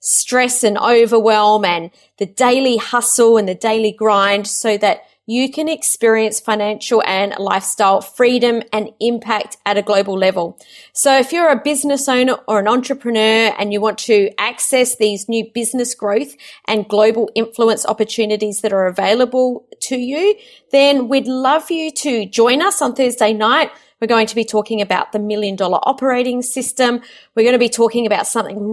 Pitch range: 210-255 Hz